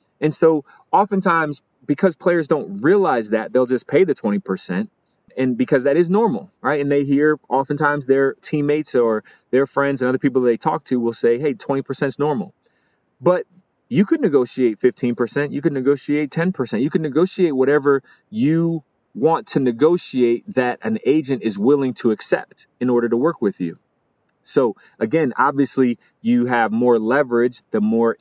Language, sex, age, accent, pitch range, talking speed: English, male, 30-49, American, 110-155 Hz, 170 wpm